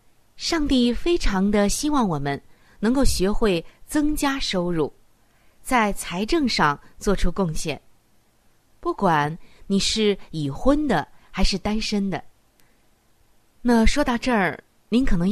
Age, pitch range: 20-39, 165-240 Hz